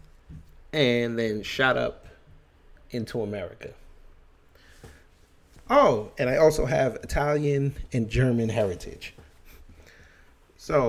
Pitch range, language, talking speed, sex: 85-125 Hz, English, 90 wpm, male